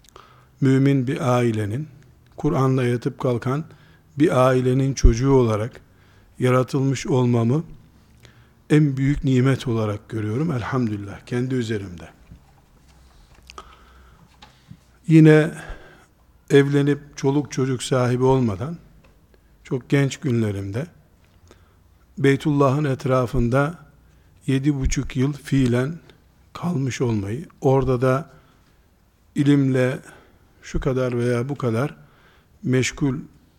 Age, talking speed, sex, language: 50-69, 80 wpm, male, Turkish